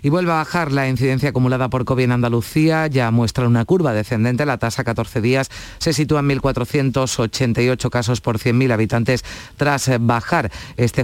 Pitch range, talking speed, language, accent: 110-135 Hz, 170 wpm, Spanish, Spanish